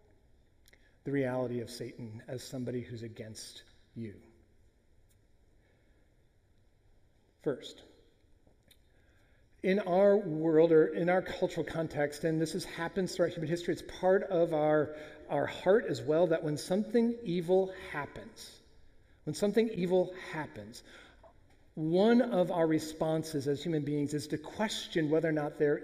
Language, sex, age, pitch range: English, male, 40-59, 125-185 Hz